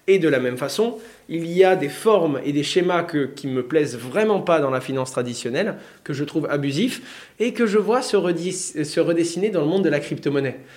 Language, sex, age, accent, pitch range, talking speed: French, male, 20-39, French, 140-165 Hz, 230 wpm